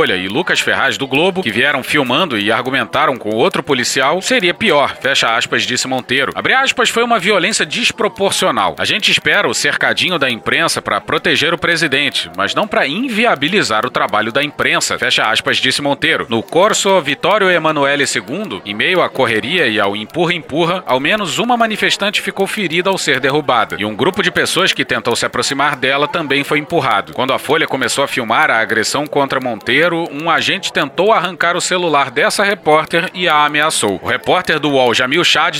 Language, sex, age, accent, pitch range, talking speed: Portuguese, male, 40-59, Brazilian, 140-190 Hz, 185 wpm